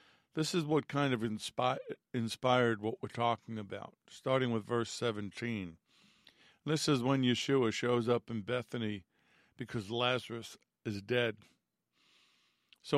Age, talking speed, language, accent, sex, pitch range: 50-69, 125 wpm, English, American, male, 115-135 Hz